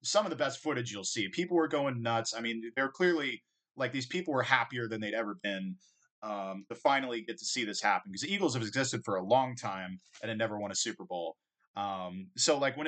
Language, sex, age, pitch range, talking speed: English, male, 20-39, 100-135 Hz, 240 wpm